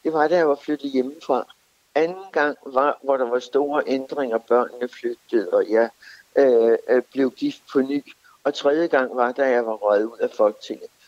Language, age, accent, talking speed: Danish, 60-79, native, 190 wpm